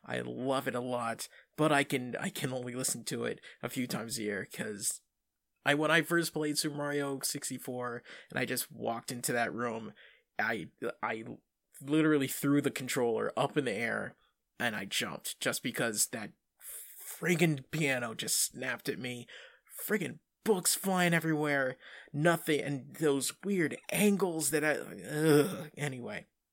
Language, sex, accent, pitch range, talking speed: English, male, American, 135-185 Hz, 160 wpm